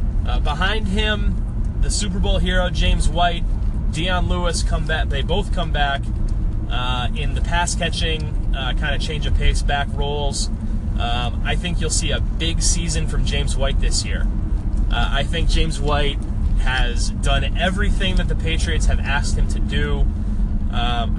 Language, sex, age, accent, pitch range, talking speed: English, male, 30-49, American, 75-100 Hz, 155 wpm